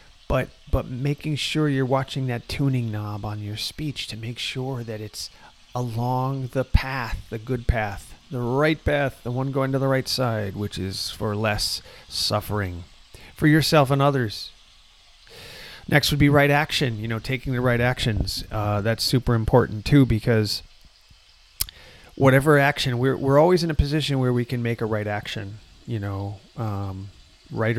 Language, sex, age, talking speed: English, male, 30-49, 170 wpm